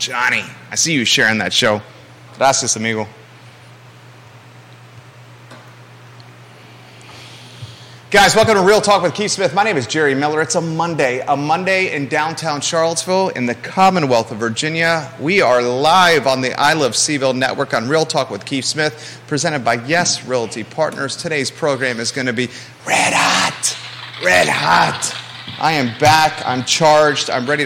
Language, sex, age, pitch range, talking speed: English, male, 30-49, 125-165 Hz, 155 wpm